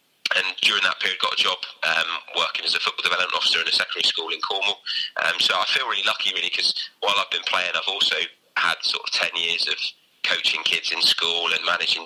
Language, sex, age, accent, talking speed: English, male, 20-39, British, 230 wpm